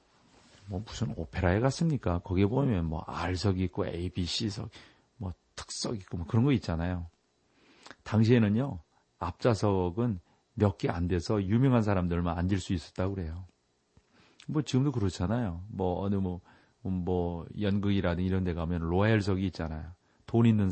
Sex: male